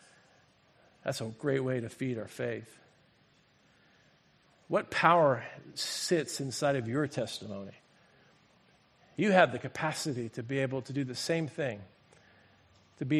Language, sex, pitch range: English, male, 125-160 Hz